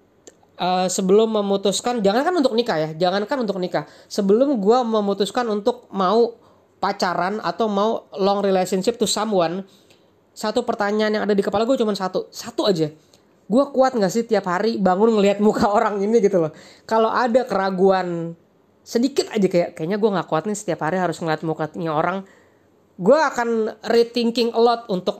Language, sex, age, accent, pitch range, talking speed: Indonesian, female, 20-39, native, 185-230 Hz, 165 wpm